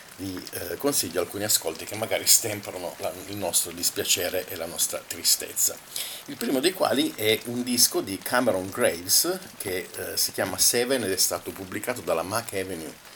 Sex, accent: male, native